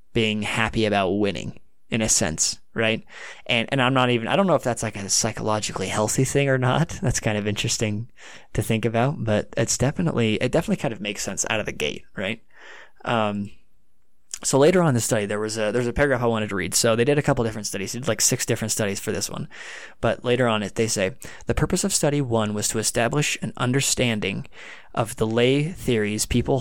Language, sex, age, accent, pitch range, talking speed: English, male, 20-39, American, 110-130 Hz, 225 wpm